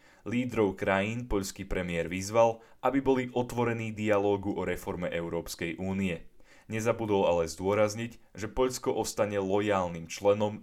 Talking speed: 120 wpm